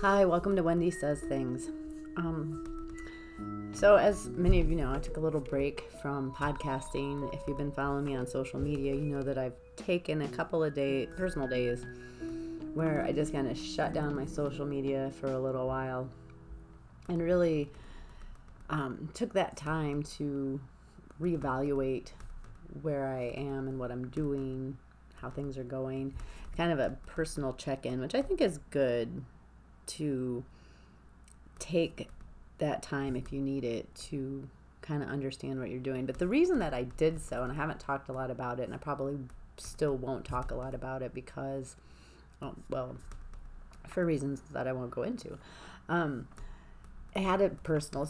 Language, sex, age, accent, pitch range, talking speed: English, female, 30-49, American, 130-160 Hz, 170 wpm